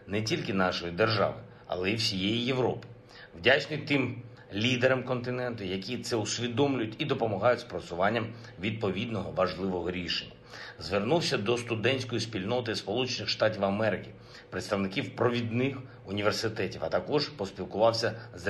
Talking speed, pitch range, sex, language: 115 wpm, 105-130 Hz, male, Ukrainian